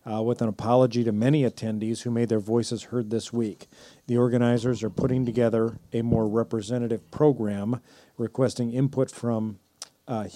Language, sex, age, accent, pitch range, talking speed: English, male, 40-59, American, 105-120 Hz, 155 wpm